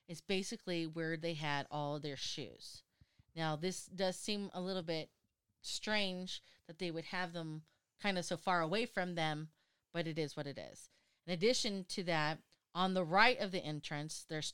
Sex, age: female, 30-49